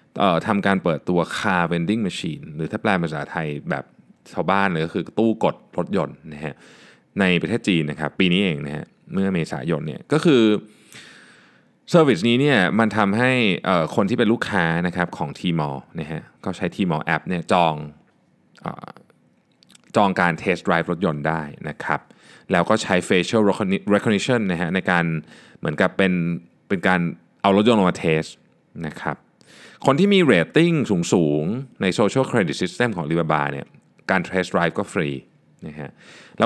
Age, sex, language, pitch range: 20-39, male, Thai, 80-110 Hz